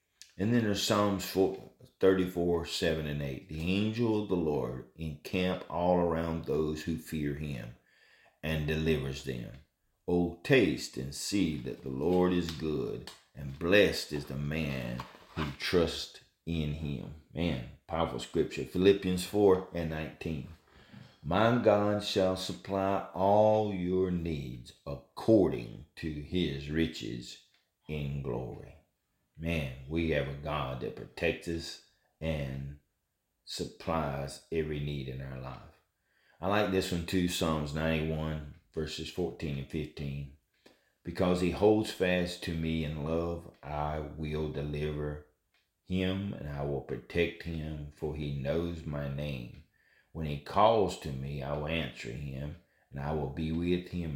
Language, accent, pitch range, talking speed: English, American, 70-90 Hz, 135 wpm